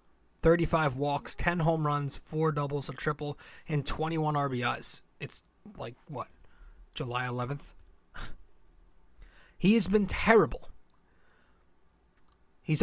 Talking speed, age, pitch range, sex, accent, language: 105 wpm, 30-49, 140-175 Hz, male, American, English